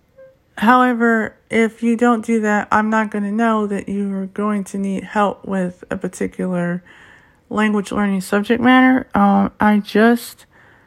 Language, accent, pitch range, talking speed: English, American, 185-215 Hz, 150 wpm